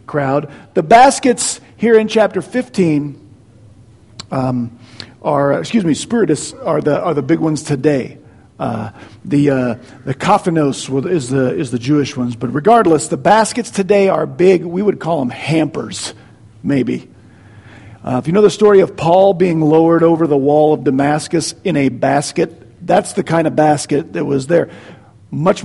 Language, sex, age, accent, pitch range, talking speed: English, male, 50-69, American, 135-185 Hz, 160 wpm